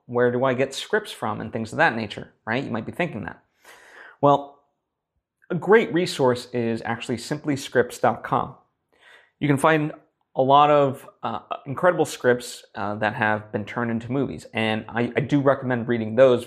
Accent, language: American, English